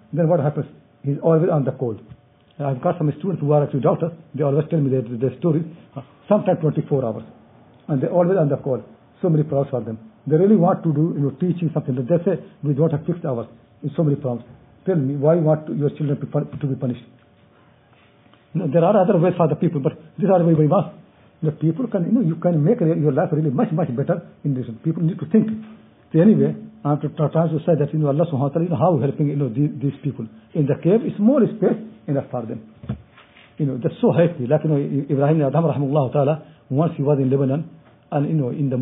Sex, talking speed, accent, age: male, 240 wpm, Indian, 60-79